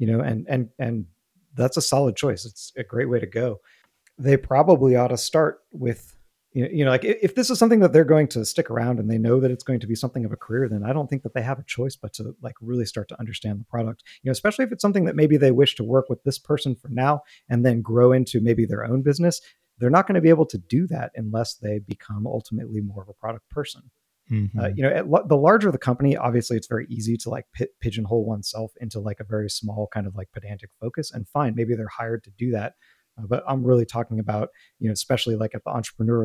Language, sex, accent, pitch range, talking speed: English, male, American, 110-130 Hz, 260 wpm